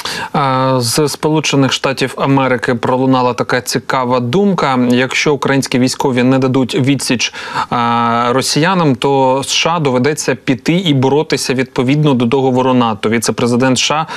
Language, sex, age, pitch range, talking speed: Ukrainian, male, 30-49, 130-150 Hz, 105 wpm